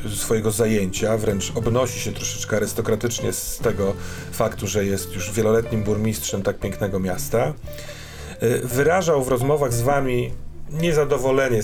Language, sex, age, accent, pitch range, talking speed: Polish, male, 40-59, native, 105-125 Hz, 125 wpm